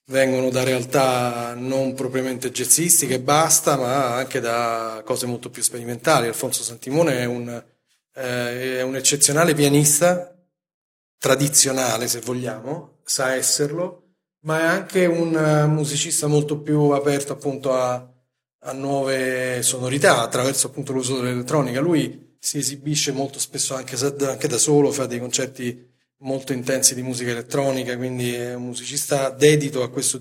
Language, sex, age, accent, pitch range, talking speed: Italian, male, 30-49, native, 125-145 Hz, 140 wpm